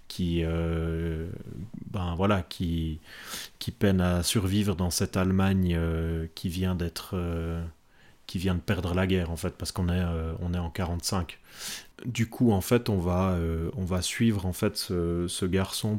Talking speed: 180 wpm